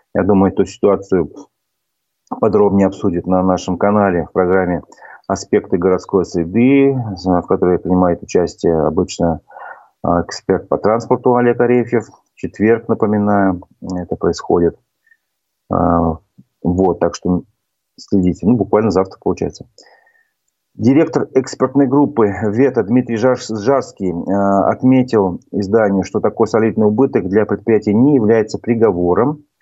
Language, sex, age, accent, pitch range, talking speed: Russian, male, 30-49, native, 95-130 Hz, 110 wpm